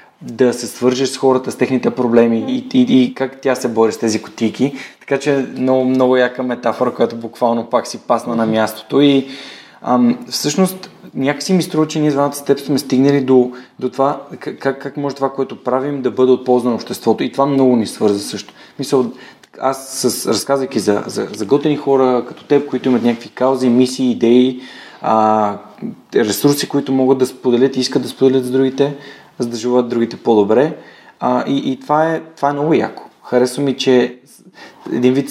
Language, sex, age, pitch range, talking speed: Bulgarian, male, 20-39, 120-140 Hz, 190 wpm